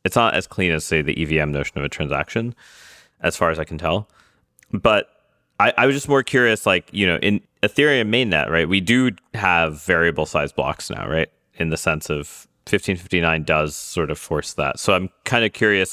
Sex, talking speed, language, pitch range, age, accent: male, 205 wpm, English, 80-100 Hz, 30-49, American